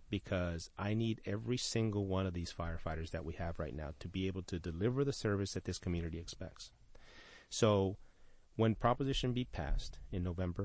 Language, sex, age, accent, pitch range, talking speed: English, male, 30-49, American, 85-105 Hz, 180 wpm